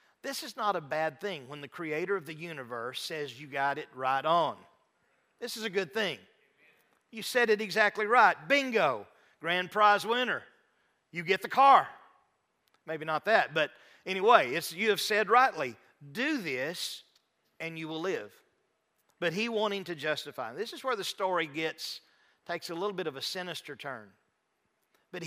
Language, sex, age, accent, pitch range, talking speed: English, male, 50-69, American, 155-215 Hz, 170 wpm